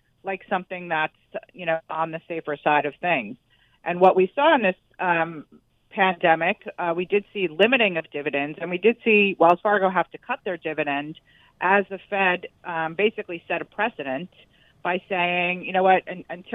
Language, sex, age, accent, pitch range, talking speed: English, female, 40-59, American, 160-195 Hz, 180 wpm